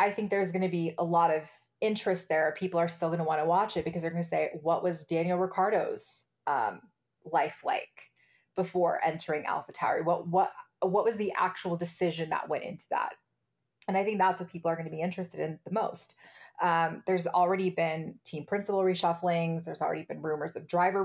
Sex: female